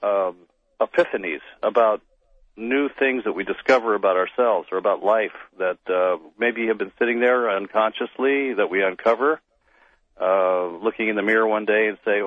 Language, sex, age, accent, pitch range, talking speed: English, male, 40-59, American, 100-120 Hz, 160 wpm